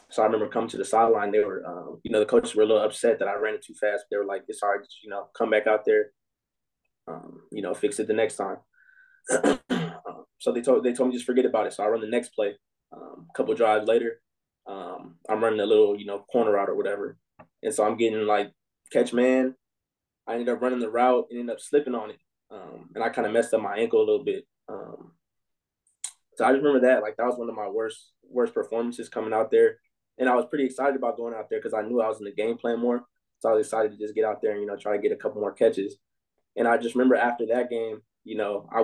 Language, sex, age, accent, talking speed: English, male, 20-39, American, 270 wpm